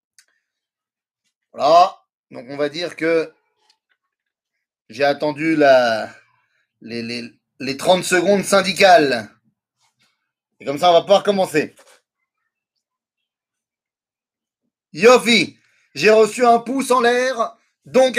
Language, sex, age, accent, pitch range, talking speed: French, male, 30-49, French, 190-255 Hz, 100 wpm